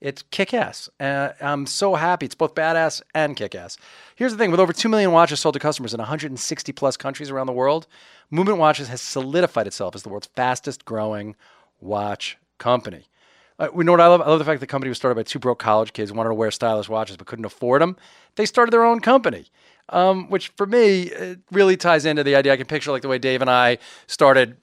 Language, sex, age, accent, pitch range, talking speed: English, male, 40-59, American, 115-150 Hz, 230 wpm